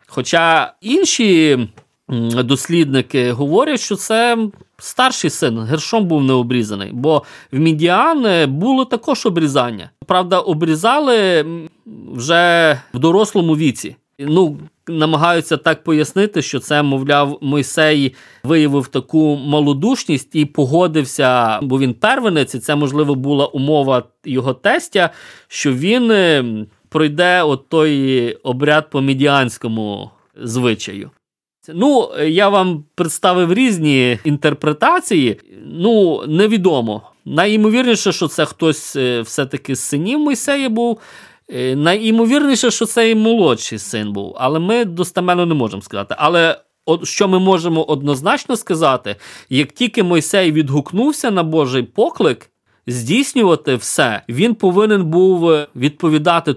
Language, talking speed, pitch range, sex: Ukrainian, 110 wpm, 135-200 Hz, male